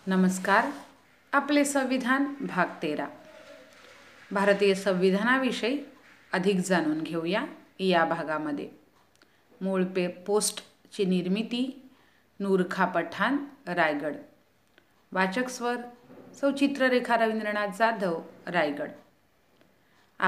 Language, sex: Hindi, female